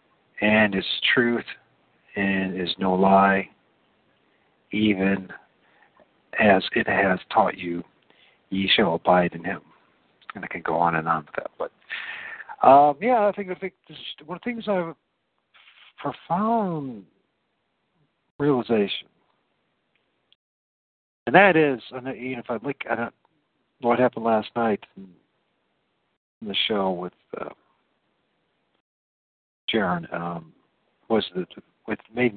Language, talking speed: English, 125 wpm